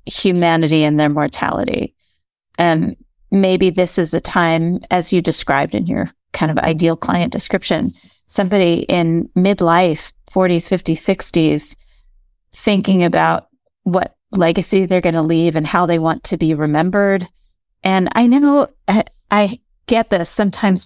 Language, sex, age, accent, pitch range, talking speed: English, female, 30-49, American, 160-195 Hz, 140 wpm